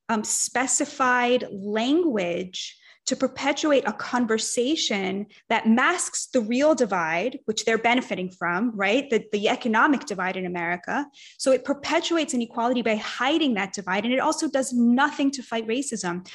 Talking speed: 145 wpm